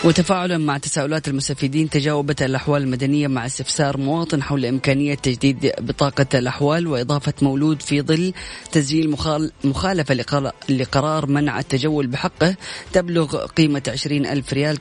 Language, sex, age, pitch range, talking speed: Arabic, female, 20-39, 130-150 Hz, 120 wpm